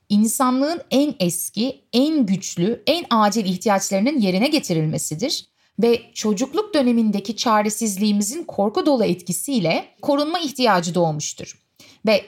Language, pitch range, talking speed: Turkish, 200-280 Hz, 105 wpm